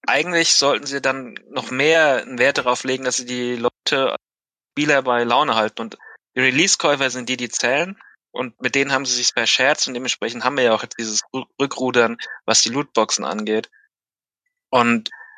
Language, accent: German, German